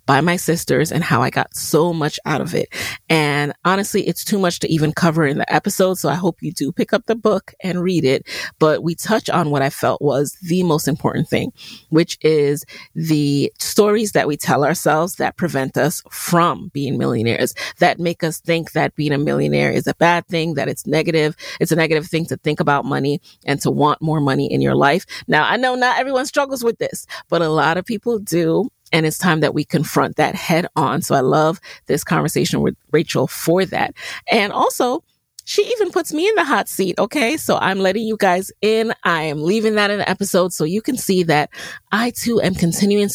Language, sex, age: English, female, 30-49